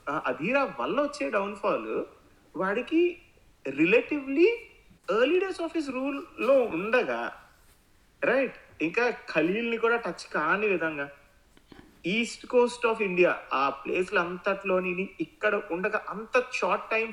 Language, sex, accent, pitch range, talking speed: Telugu, male, native, 175-260 Hz, 90 wpm